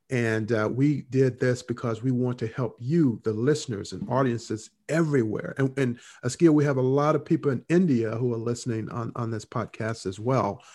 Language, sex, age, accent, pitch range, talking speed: English, male, 50-69, American, 115-140 Hz, 195 wpm